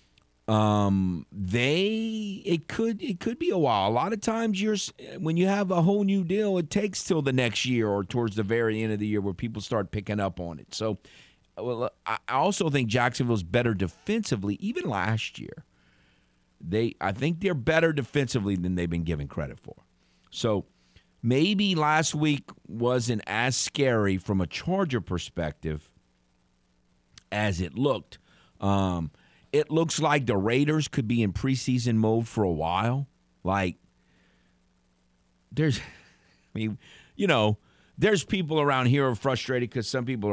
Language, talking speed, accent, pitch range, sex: English, 160 wpm, American, 90-140 Hz, male